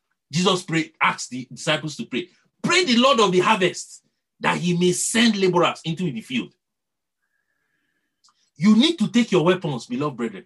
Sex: male